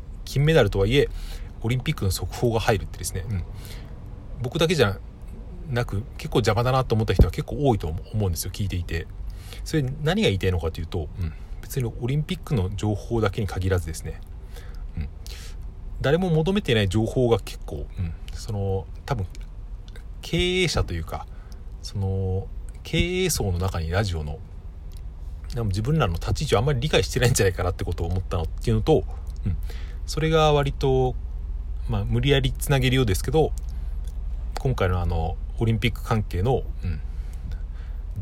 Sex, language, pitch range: male, Japanese, 85-120 Hz